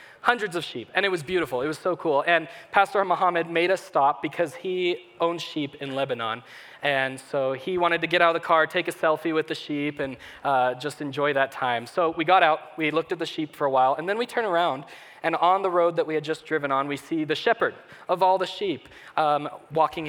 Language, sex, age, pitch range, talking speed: English, male, 20-39, 145-180 Hz, 245 wpm